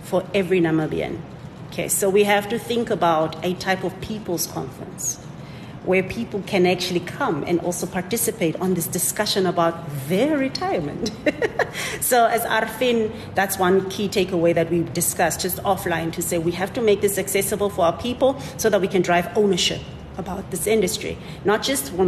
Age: 40-59